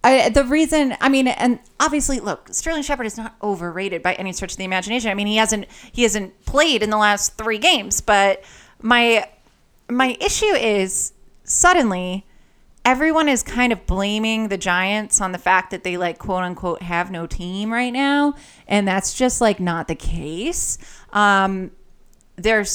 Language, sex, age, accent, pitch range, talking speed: English, female, 30-49, American, 180-240 Hz, 170 wpm